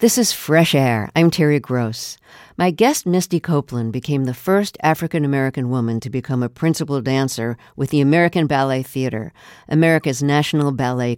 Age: 50-69